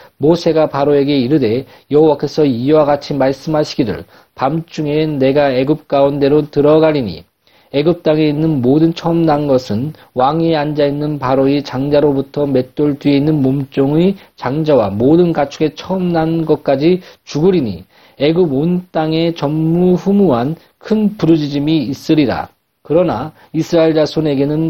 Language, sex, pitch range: Korean, male, 140-165 Hz